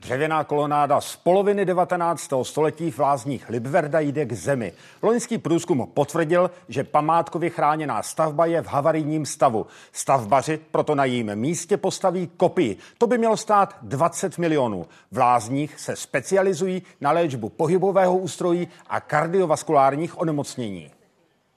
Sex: male